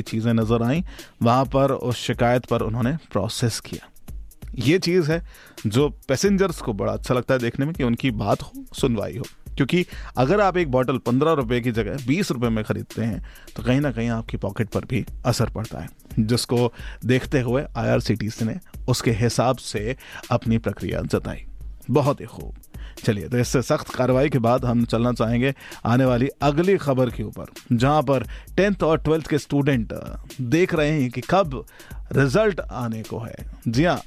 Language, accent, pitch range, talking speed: Hindi, native, 115-140 Hz, 180 wpm